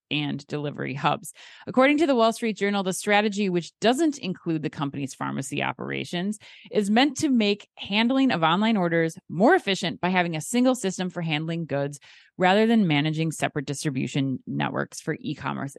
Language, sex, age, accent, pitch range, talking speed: English, female, 30-49, American, 155-225 Hz, 170 wpm